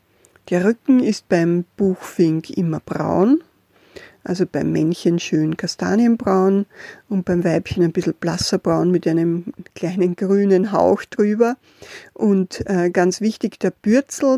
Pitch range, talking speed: 175-210 Hz, 125 wpm